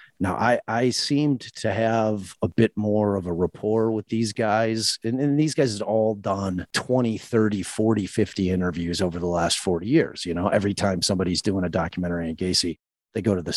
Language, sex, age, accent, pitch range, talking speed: English, male, 30-49, American, 90-110 Hz, 205 wpm